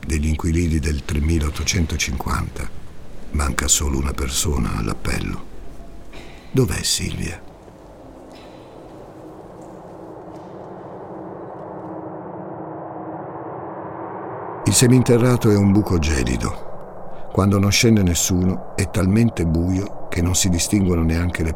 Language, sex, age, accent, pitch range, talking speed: Italian, male, 60-79, native, 80-95 Hz, 85 wpm